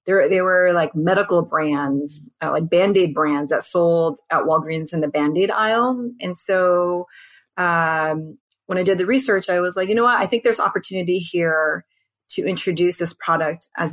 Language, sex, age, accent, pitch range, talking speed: English, female, 30-49, American, 160-200 Hz, 180 wpm